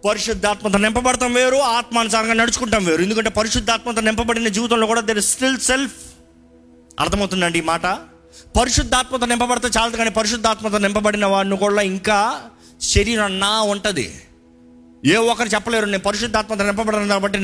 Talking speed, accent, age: 125 wpm, native, 30-49